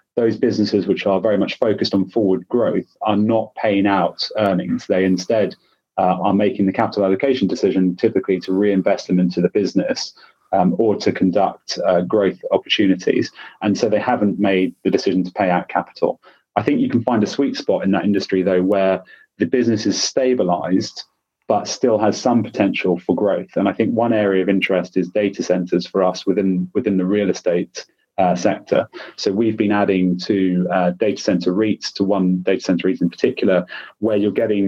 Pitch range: 90-100 Hz